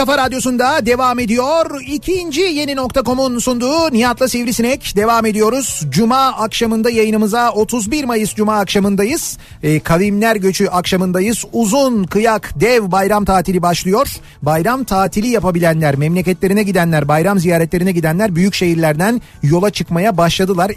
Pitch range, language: 170-230 Hz, Turkish